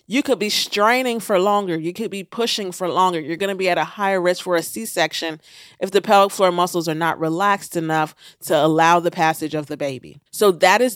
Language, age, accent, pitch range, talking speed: English, 40-59, American, 165-230 Hz, 230 wpm